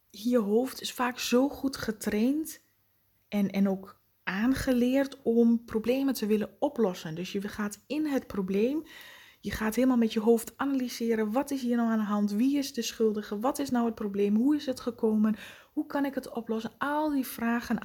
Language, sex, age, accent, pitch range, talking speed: Dutch, female, 20-39, Dutch, 200-250 Hz, 190 wpm